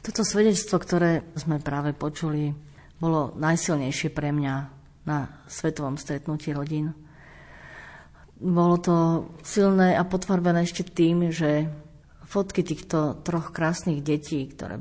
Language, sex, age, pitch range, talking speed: Slovak, female, 50-69, 140-170 Hz, 115 wpm